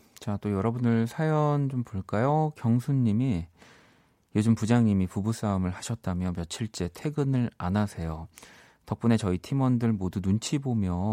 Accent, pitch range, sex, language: native, 95-125 Hz, male, Korean